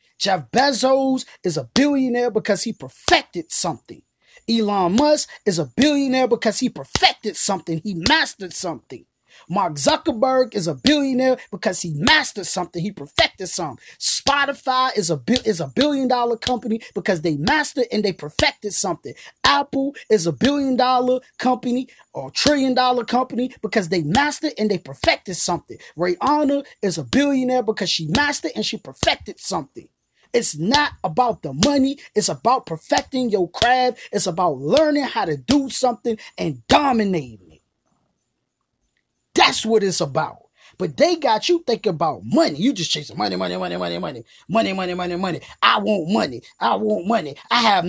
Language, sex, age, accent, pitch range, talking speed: English, male, 20-39, American, 190-270 Hz, 155 wpm